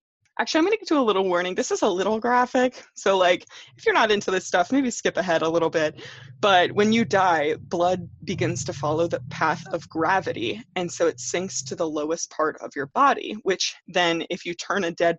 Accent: American